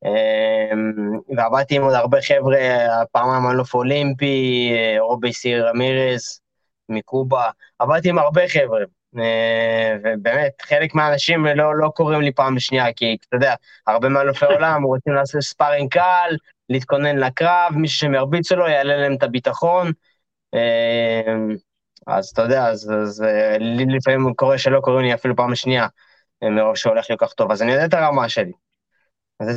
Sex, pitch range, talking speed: male, 120-145 Hz, 140 wpm